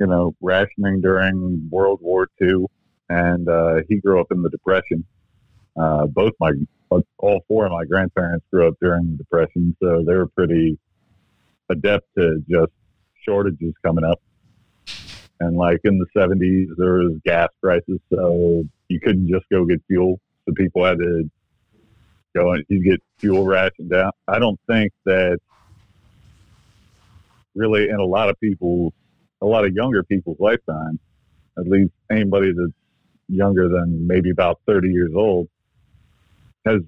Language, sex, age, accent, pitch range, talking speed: English, male, 50-69, American, 85-100 Hz, 150 wpm